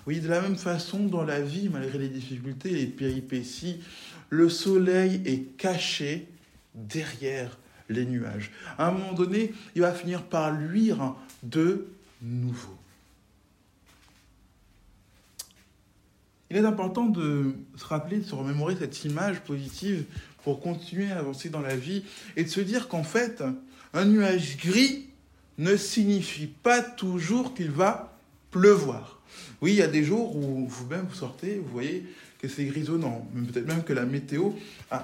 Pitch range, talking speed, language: 130-185 Hz, 150 wpm, French